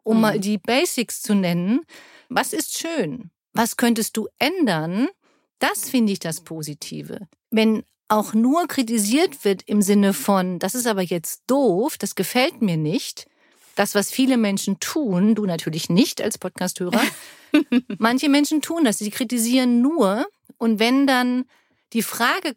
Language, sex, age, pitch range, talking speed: German, female, 50-69, 195-250 Hz, 150 wpm